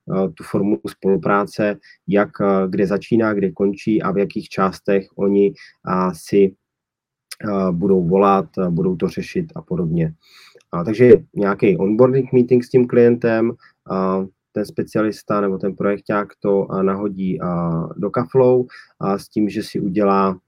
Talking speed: 125 wpm